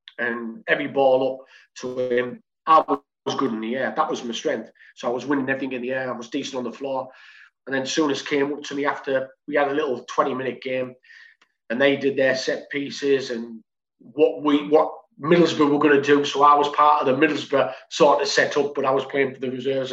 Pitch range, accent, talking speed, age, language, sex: 130-160 Hz, British, 240 wpm, 30-49, English, male